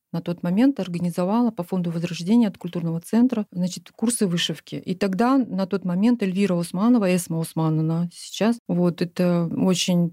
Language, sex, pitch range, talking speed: Ukrainian, female, 175-220 Hz, 155 wpm